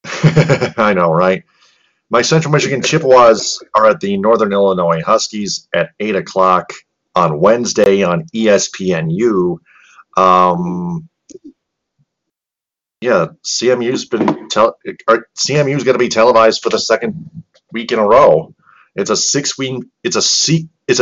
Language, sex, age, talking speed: English, male, 30-49, 130 wpm